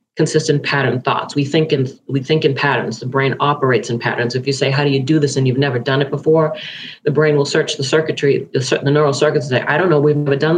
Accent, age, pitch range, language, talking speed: American, 40-59, 130-155 Hz, English, 270 wpm